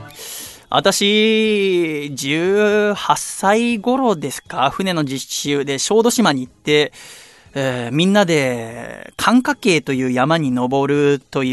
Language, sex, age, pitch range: Japanese, male, 20-39, 140-195 Hz